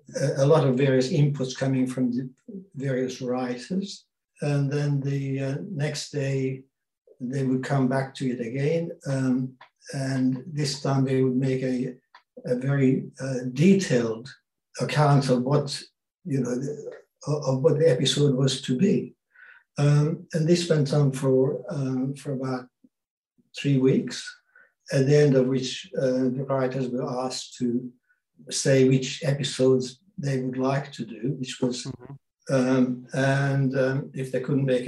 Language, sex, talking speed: English, male, 150 wpm